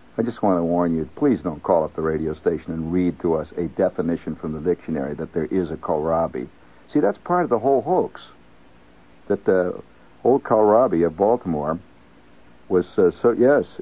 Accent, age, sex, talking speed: American, 60-79, male, 185 wpm